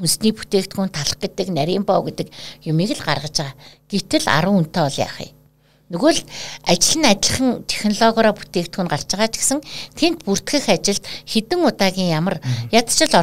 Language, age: Russian, 60-79